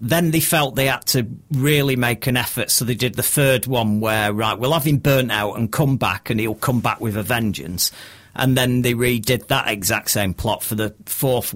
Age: 40-59